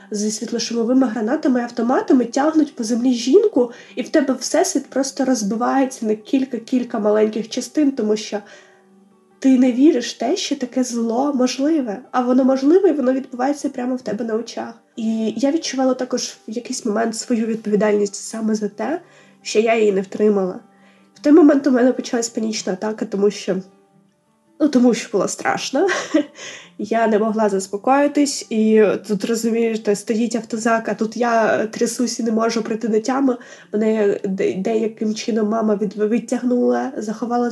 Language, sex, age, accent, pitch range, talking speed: Ukrainian, female, 20-39, native, 215-255 Hz, 155 wpm